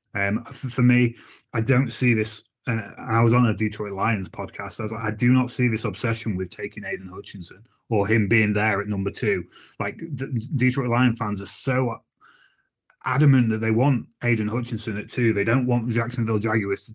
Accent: British